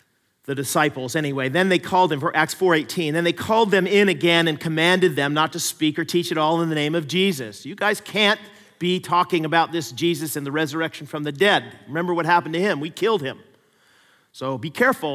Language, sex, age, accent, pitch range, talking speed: English, male, 40-59, American, 150-210 Hz, 220 wpm